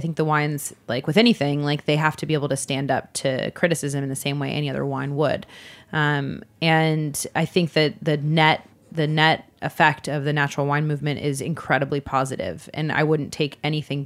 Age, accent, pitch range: 20-39, American, 140-160 Hz